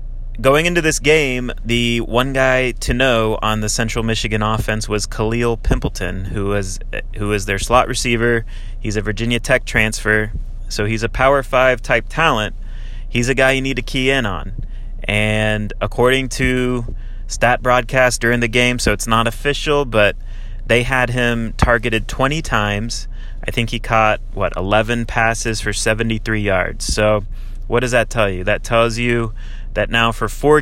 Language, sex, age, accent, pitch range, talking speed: English, male, 30-49, American, 110-120 Hz, 170 wpm